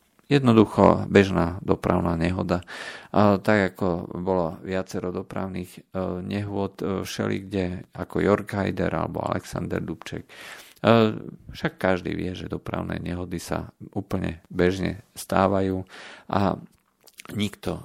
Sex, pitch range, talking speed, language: male, 90-105 Hz, 95 wpm, Slovak